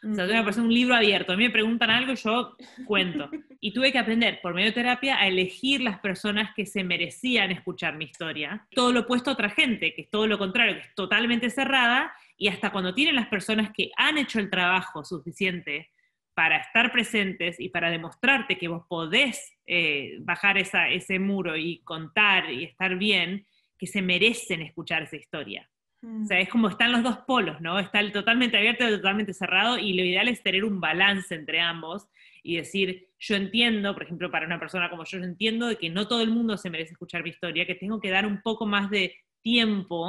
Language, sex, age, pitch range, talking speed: Spanish, female, 20-39, 180-230 Hz, 215 wpm